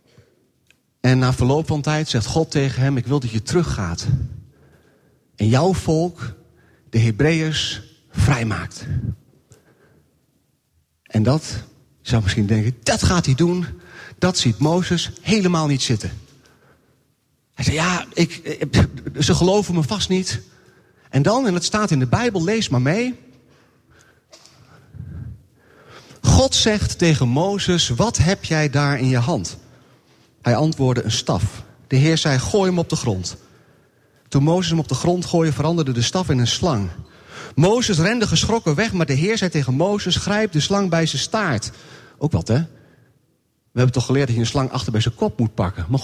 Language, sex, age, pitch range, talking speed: Dutch, male, 40-59, 125-175 Hz, 165 wpm